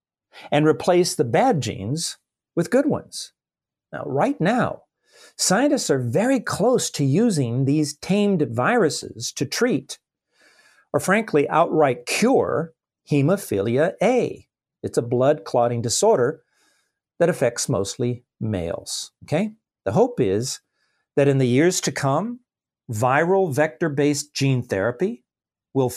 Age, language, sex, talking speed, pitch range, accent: 50-69, English, male, 120 wpm, 125-185 Hz, American